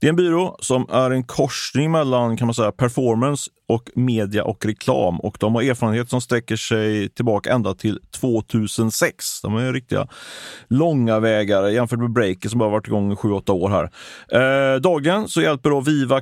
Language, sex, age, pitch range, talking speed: Swedish, male, 30-49, 105-130 Hz, 190 wpm